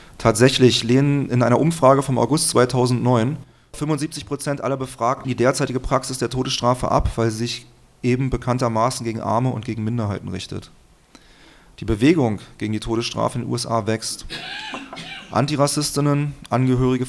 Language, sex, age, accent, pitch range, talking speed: German, male, 30-49, German, 115-130 Hz, 135 wpm